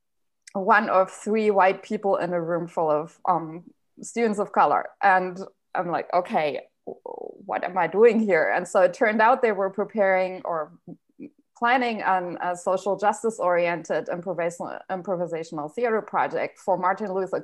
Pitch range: 180-225 Hz